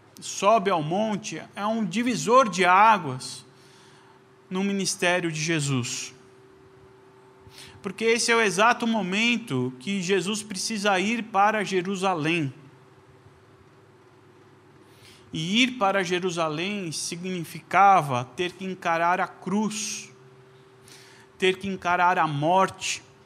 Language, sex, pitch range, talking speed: Portuguese, male, 130-210 Hz, 100 wpm